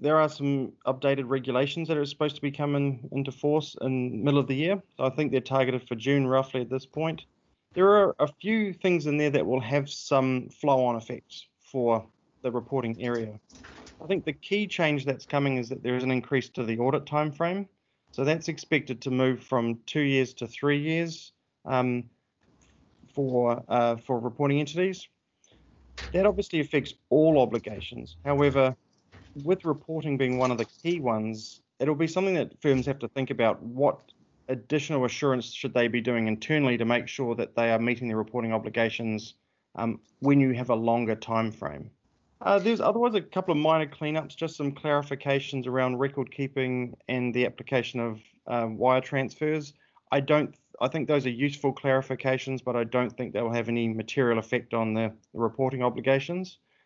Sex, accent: male, Australian